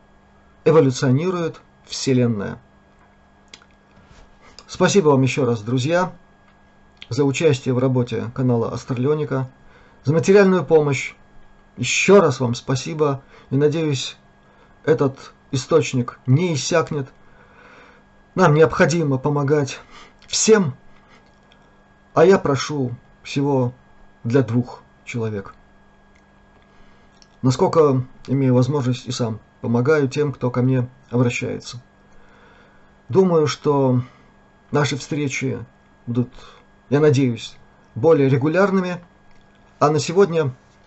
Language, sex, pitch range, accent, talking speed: Russian, male, 120-150 Hz, native, 90 wpm